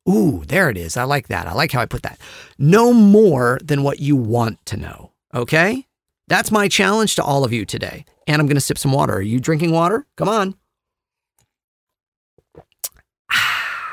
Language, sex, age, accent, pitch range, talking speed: English, male, 40-59, American, 115-155 Hz, 190 wpm